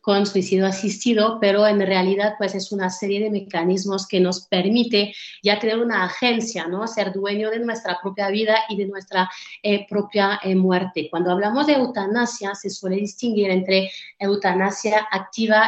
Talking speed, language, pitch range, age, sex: 165 wpm, Spanish, 185-220 Hz, 30-49, female